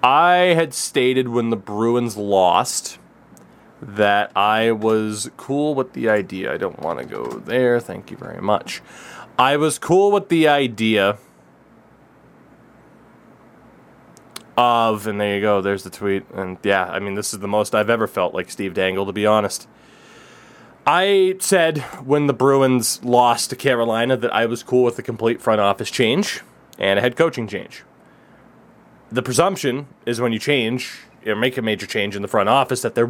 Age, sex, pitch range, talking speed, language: 20-39, male, 110-155 Hz, 175 wpm, English